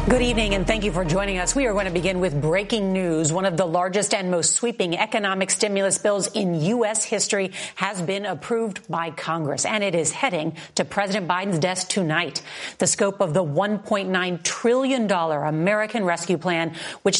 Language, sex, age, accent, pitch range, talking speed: English, female, 40-59, American, 175-225 Hz, 190 wpm